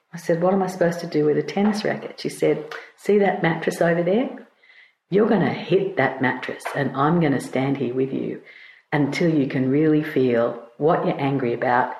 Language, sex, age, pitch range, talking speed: English, female, 50-69, 140-195 Hz, 210 wpm